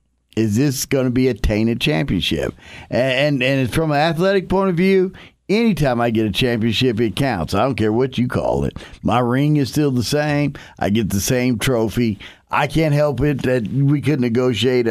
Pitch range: 115-160 Hz